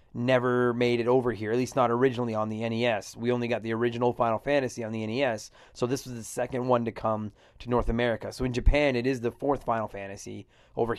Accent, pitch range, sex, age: American, 115-135 Hz, male, 30-49